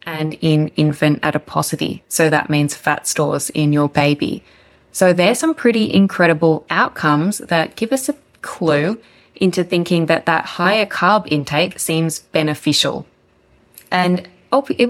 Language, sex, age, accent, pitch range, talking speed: English, female, 20-39, Australian, 155-185 Hz, 135 wpm